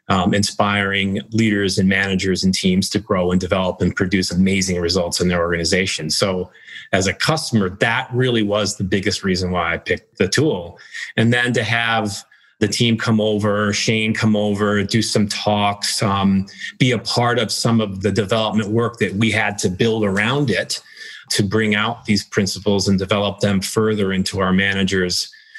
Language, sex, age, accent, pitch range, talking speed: English, male, 30-49, American, 100-110 Hz, 180 wpm